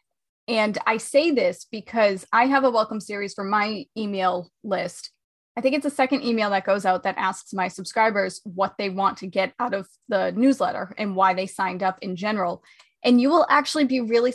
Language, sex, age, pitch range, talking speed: English, female, 20-39, 195-255 Hz, 205 wpm